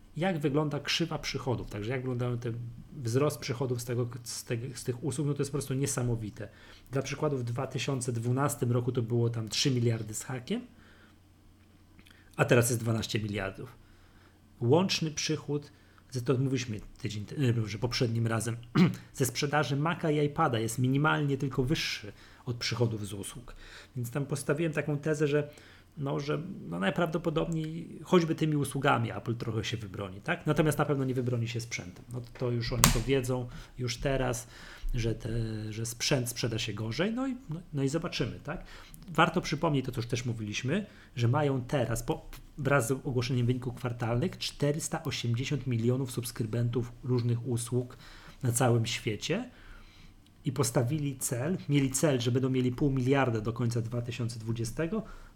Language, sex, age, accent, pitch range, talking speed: Polish, male, 30-49, native, 115-145 Hz, 160 wpm